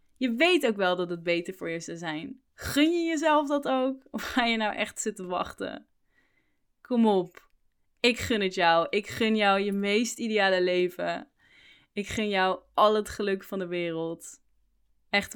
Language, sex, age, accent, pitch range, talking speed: Dutch, female, 10-29, Dutch, 175-220 Hz, 180 wpm